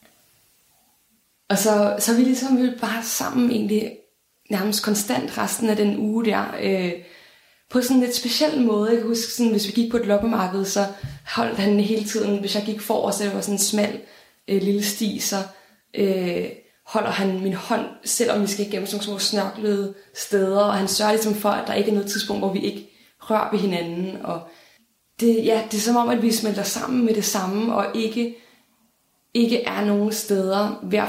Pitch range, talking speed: 200-225 Hz, 200 wpm